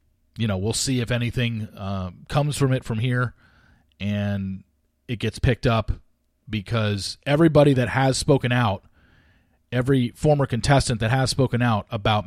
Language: English